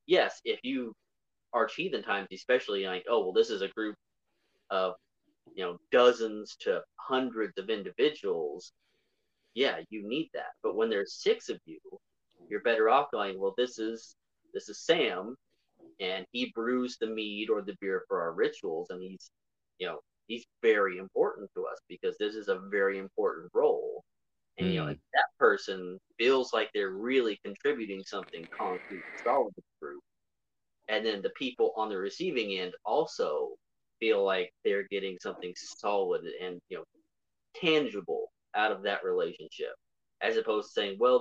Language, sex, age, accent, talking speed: English, male, 30-49, American, 165 wpm